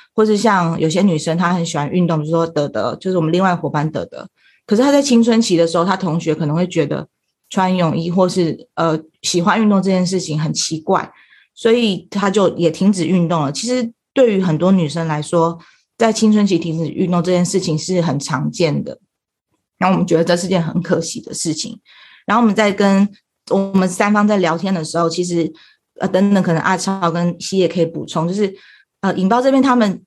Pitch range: 165-205 Hz